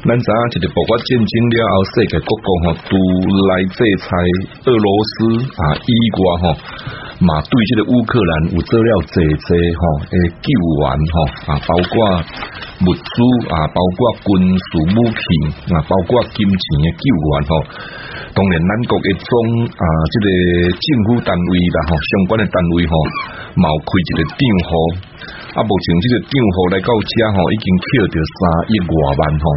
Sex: male